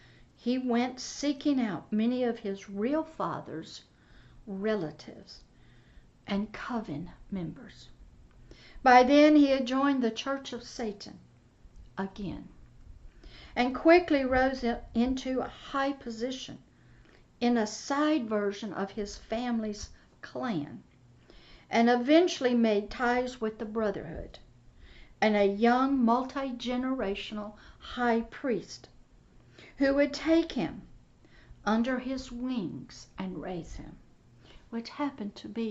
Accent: American